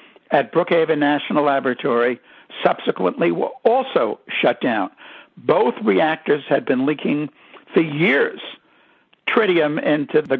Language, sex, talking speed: English, male, 110 wpm